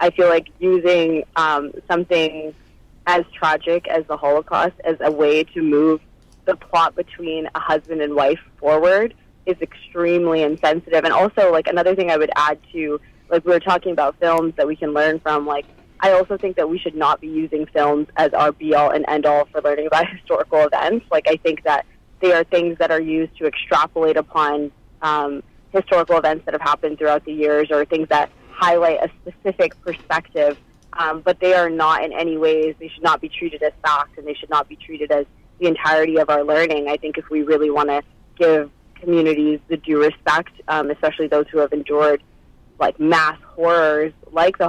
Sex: female